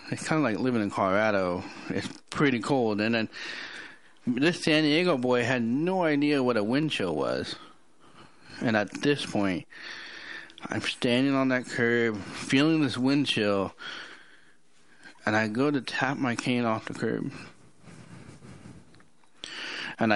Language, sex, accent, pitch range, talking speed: English, male, American, 105-140 Hz, 145 wpm